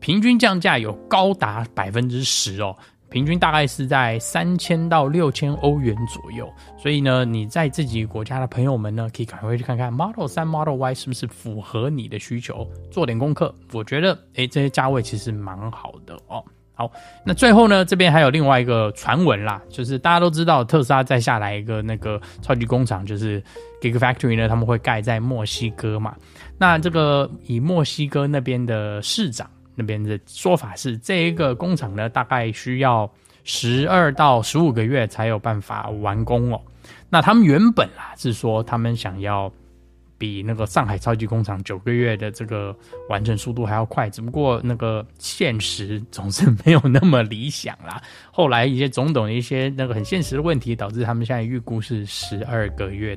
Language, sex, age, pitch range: Chinese, male, 10-29, 110-145 Hz